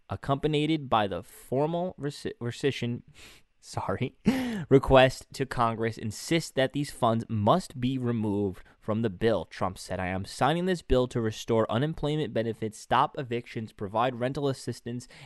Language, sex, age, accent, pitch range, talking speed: English, male, 20-39, American, 115-145 Hz, 140 wpm